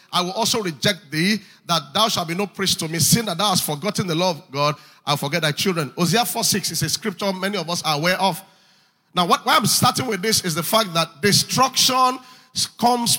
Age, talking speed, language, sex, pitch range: 40-59, 230 wpm, English, male, 180-240 Hz